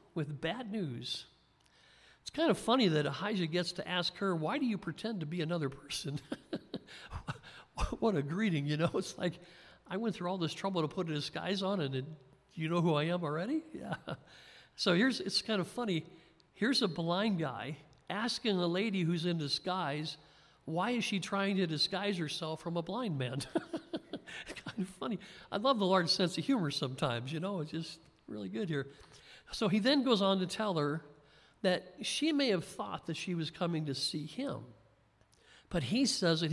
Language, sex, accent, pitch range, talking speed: English, male, American, 150-195 Hz, 190 wpm